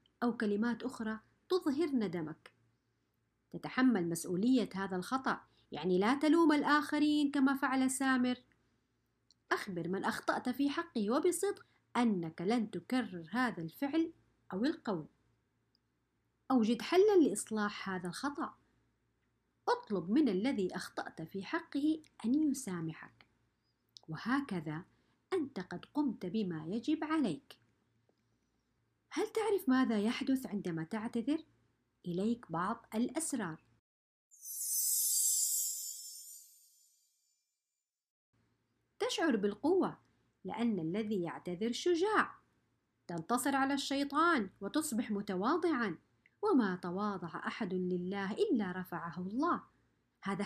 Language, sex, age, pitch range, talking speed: Arabic, female, 50-69, 185-280 Hz, 90 wpm